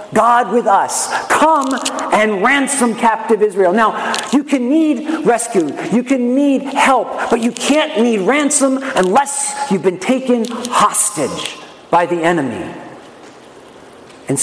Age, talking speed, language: 50-69, 130 wpm, English